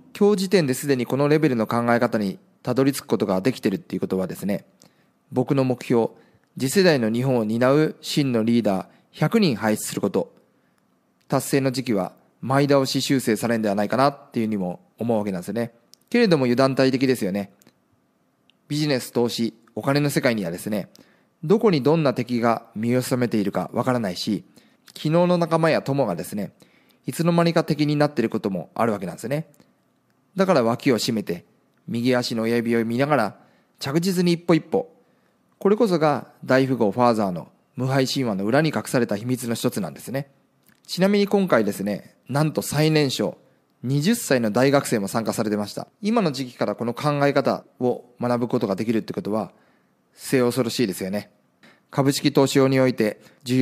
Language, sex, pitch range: Japanese, male, 115-150 Hz